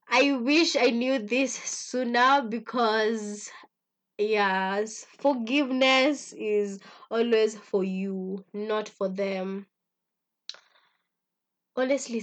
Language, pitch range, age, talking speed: English, 195-240 Hz, 20-39, 85 wpm